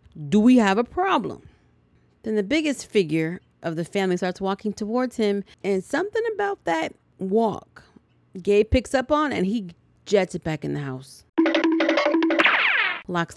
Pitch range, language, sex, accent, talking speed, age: 160-235 Hz, English, female, American, 155 wpm, 30-49